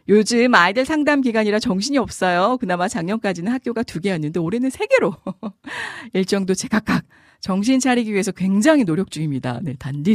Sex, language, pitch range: female, Korean, 165-250 Hz